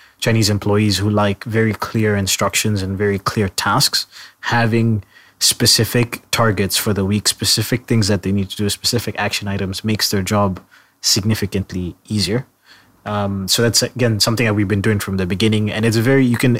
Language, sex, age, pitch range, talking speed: English, male, 20-39, 100-115 Hz, 180 wpm